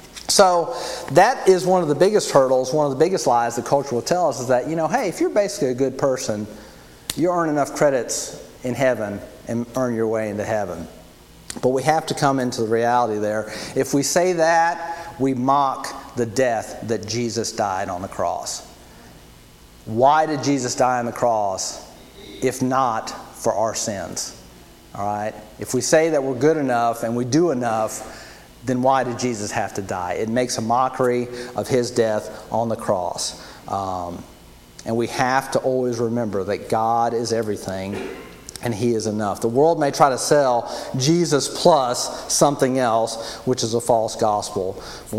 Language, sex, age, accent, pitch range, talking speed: English, male, 40-59, American, 115-135 Hz, 180 wpm